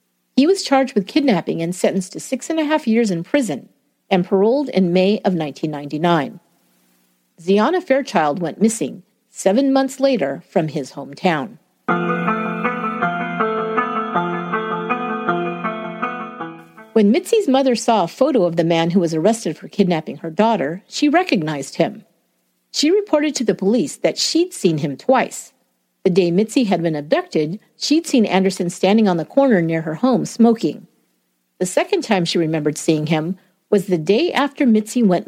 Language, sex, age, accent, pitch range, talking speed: English, female, 50-69, American, 170-245 Hz, 155 wpm